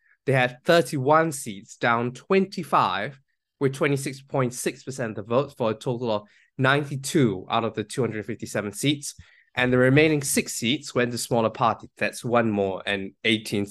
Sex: male